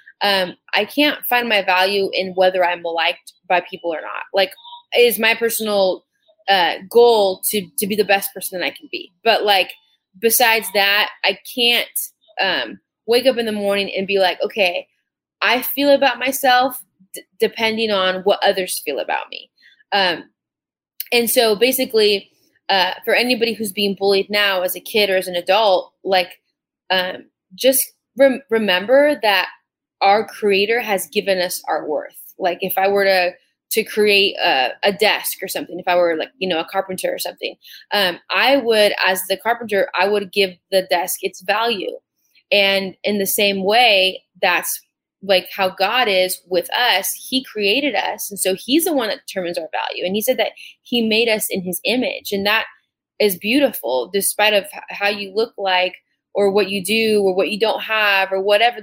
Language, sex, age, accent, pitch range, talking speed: English, female, 20-39, American, 190-230 Hz, 185 wpm